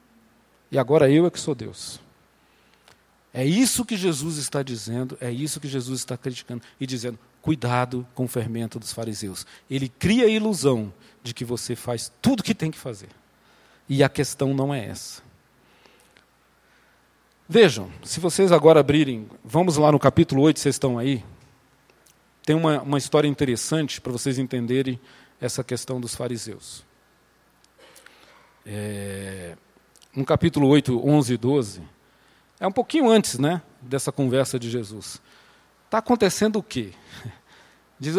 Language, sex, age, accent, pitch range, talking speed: Portuguese, male, 40-59, Brazilian, 125-195 Hz, 145 wpm